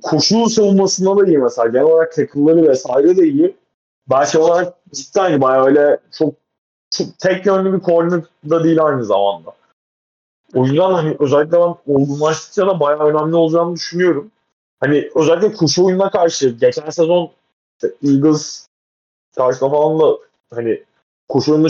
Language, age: Turkish, 30-49